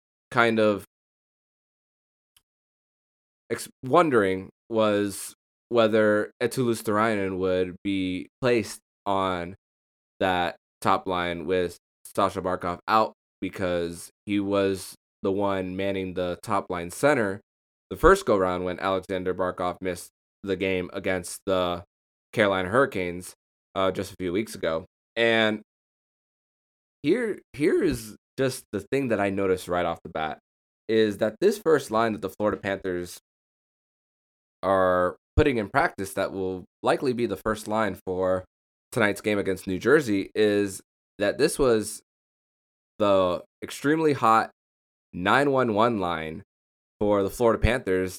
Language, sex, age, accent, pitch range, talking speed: English, male, 20-39, American, 90-105 Hz, 125 wpm